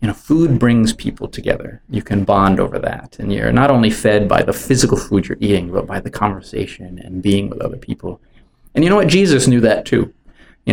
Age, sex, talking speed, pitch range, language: 20-39, male, 225 wpm, 100-125 Hz, English